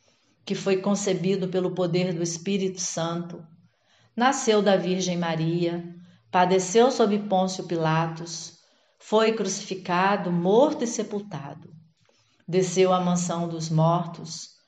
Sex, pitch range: female, 170-195 Hz